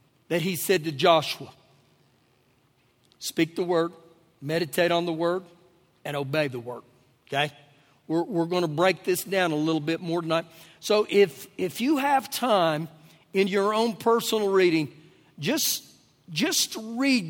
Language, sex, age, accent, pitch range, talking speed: English, male, 50-69, American, 135-190 Hz, 150 wpm